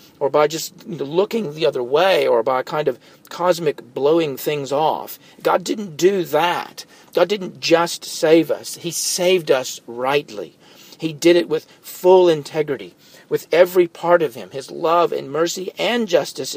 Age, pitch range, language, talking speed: 50-69, 140-175 Hz, English, 165 wpm